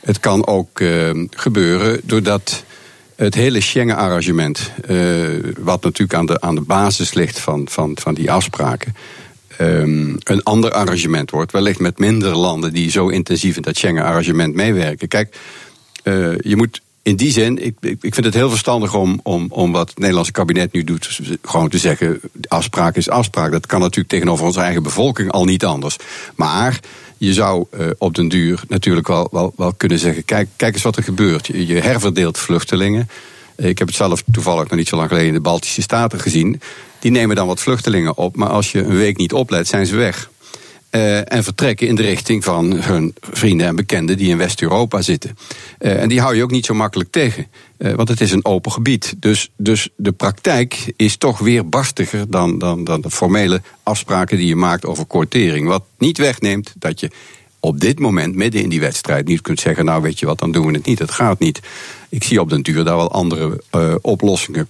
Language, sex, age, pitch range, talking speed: Dutch, male, 50-69, 85-110 Hz, 200 wpm